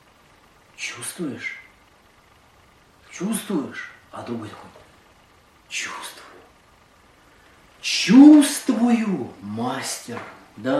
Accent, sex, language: native, male, Russian